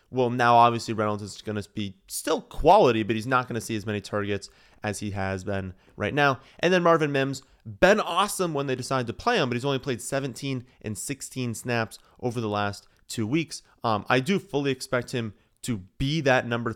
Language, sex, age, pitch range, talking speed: English, male, 30-49, 105-135 Hz, 210 wpm